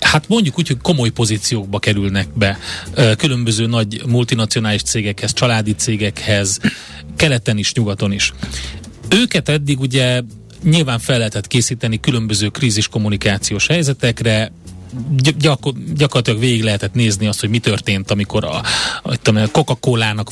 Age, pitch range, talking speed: 30-49, 105-130 Hz, 125 wpm